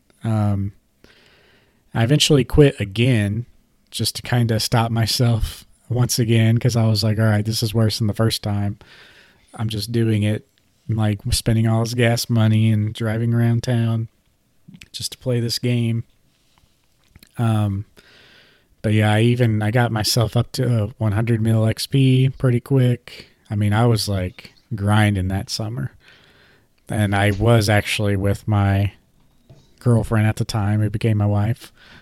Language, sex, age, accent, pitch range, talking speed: English, male, 30-49, American, 105-120 Hz, 155 wpm